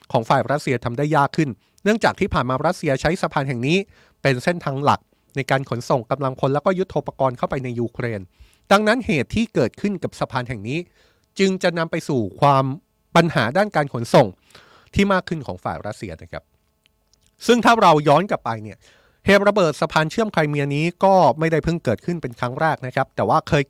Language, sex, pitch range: Thai, male, 125-170 Hz